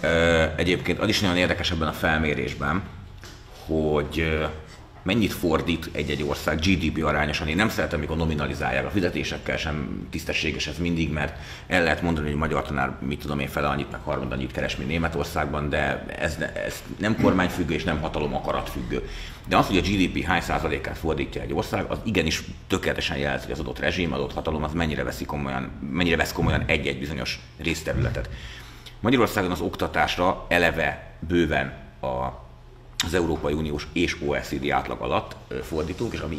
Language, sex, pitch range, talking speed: Hungarian, male, 70-85 Hz, 160 wpm